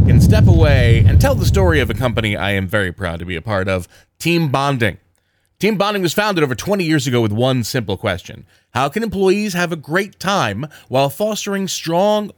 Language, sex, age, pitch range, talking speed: English, male, 30-49, 100-170 Hz, 210 wpm